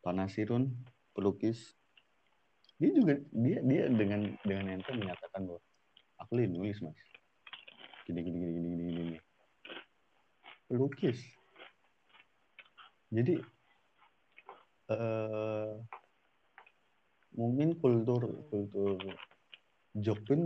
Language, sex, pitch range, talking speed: Indonesian, male, 90-110 Hz, 80 wpm